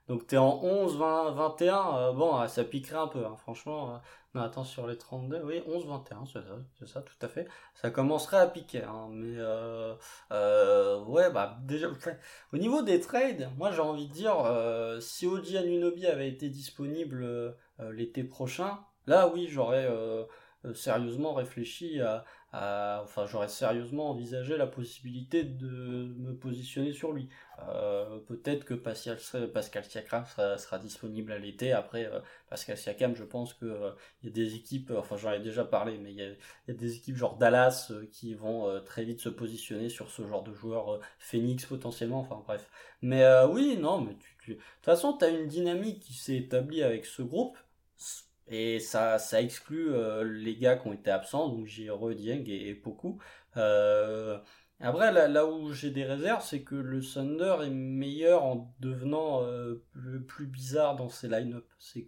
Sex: male